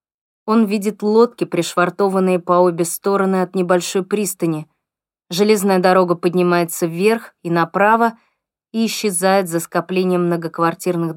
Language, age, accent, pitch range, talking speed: Russian, 20-39, native, 170-195 Hz, 115 wpm